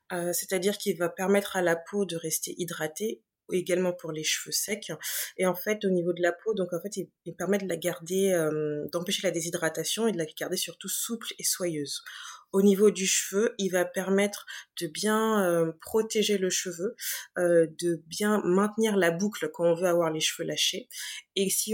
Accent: French